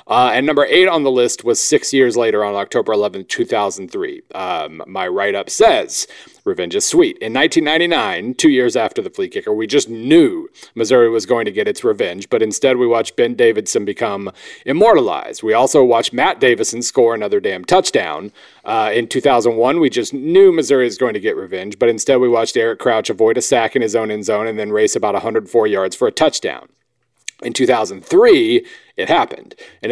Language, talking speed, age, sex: English, 195 wpm, 40-59, male